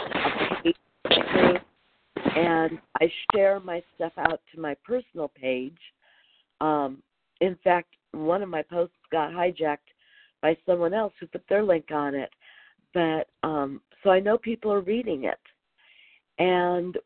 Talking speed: 135 wpm